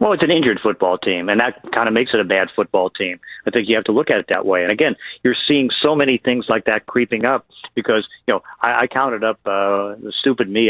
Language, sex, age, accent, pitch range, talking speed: English, male, 40-59, American, 105-125 Hz, 270 wpm